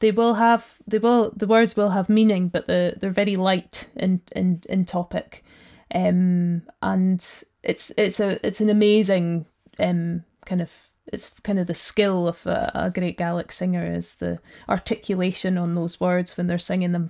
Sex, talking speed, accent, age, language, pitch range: female, 180 wpm, British, 20-39, English, 175-210 Hz